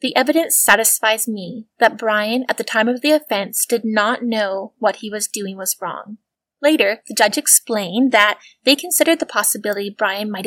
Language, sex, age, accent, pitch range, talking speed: English, female, 20-39, American, 210-255 Hz, 185 wpm